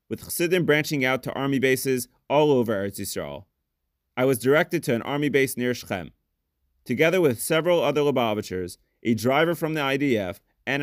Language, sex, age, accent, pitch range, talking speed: English, male, 30-49, American, 95-135 Hz, 165 wpm